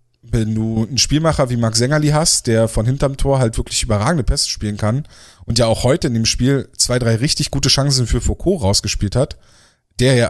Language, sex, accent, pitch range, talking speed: German, male, German, 110-135 Hz, 210 wpm